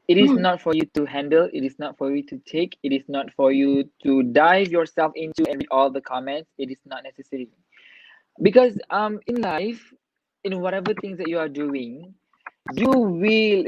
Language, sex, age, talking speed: English, male, 20-39, 195 wpm